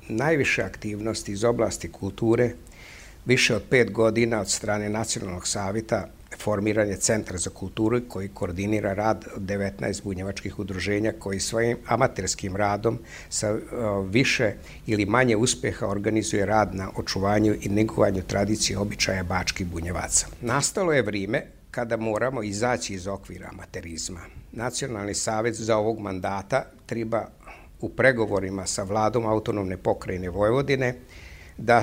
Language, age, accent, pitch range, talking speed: Croatian, 60-79, American, 95-115 Hz, 125 wpm